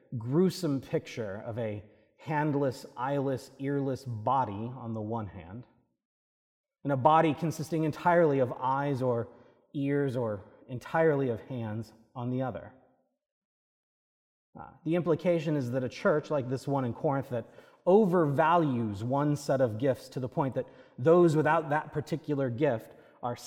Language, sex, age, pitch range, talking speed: English, male, 30-49, 115-155 Hz, 145 wpm